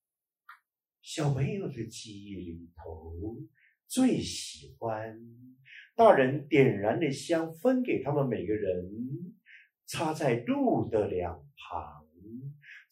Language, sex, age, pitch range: Chinese, male, 50-69, 105-175 Hz